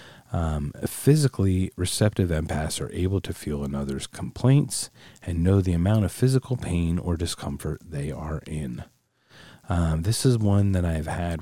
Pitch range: 75-95 Hz